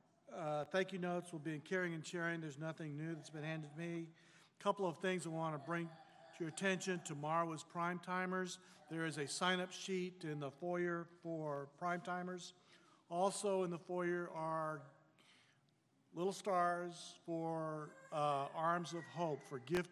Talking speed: 170 wpm